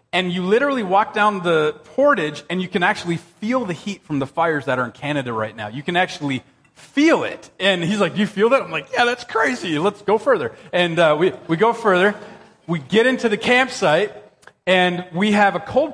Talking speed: 220 wpm